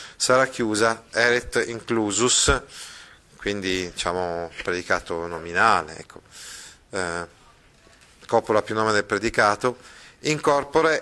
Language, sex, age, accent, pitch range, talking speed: Italian, male, 30-49, native, 100-130 Hz, 85 wpm